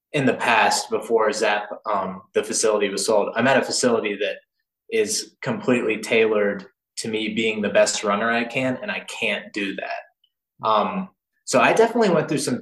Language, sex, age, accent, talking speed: English, male, 20-39, American, 180 wpm